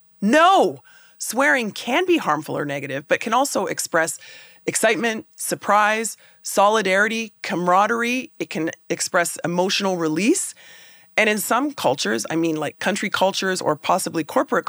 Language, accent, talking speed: English, American, 130 wpm